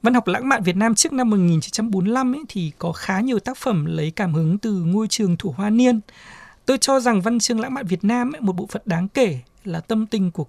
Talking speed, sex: 250 wpm, male